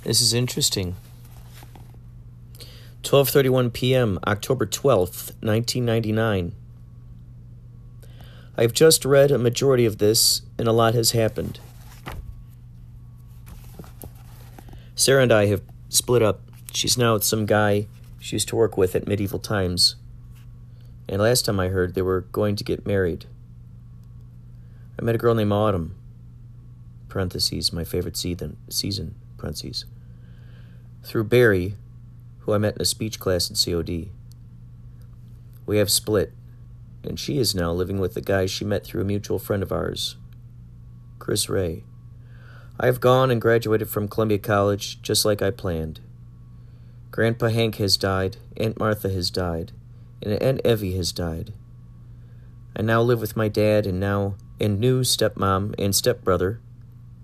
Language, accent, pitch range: English, American, 105-120 Hz